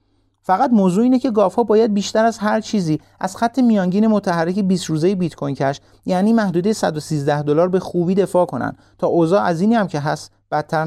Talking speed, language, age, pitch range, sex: 195 wpm, Persian, 30-49, 140-210 Hz, male